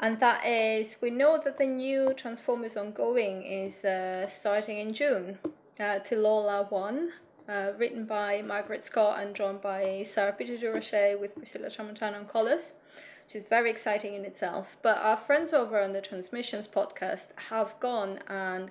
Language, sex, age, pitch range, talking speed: English, female, 20-39, 200-245 Hz, 160 wpm